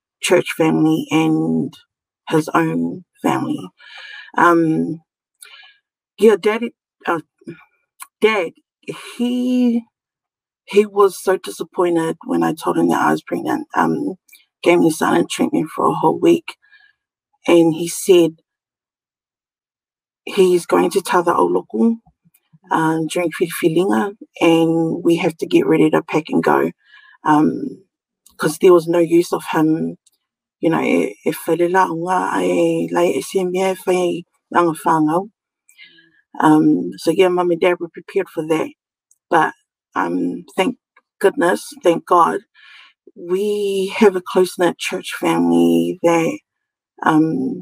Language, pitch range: English, 160-230 Hz